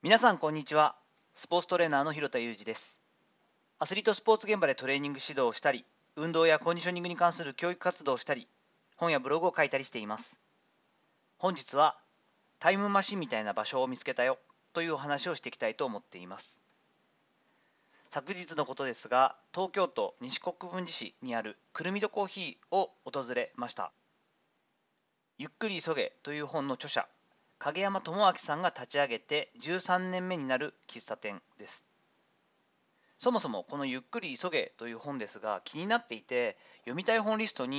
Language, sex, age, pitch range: Japanese, male, 40-59, 145-200 Hz